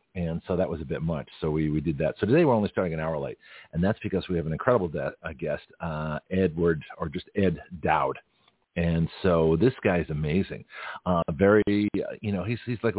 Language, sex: English, male